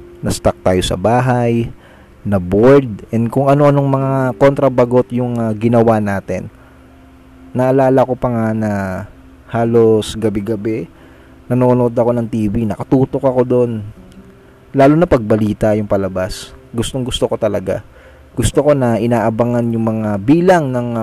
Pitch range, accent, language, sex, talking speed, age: 100-130 Hz, native, Filipino, male, 130 wpm, 20-39